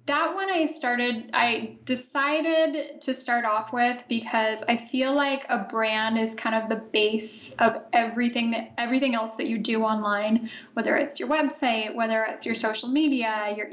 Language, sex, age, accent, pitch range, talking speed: English, female, 10-29, American, 225-275 Hz, 170 wpm